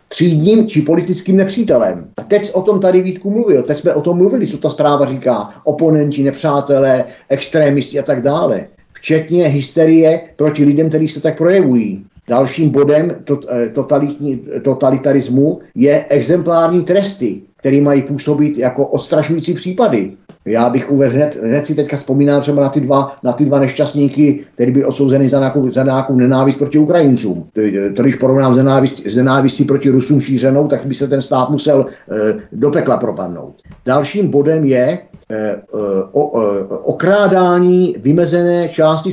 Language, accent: Czech, native